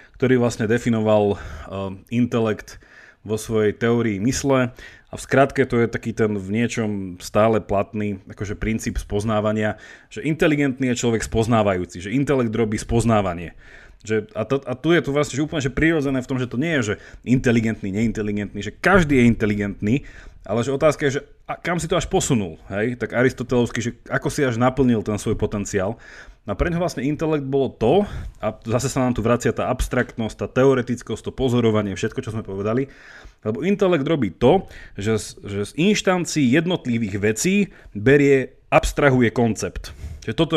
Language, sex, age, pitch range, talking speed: Slovak, male, 30-49, 110-145 Hz, 170 wpm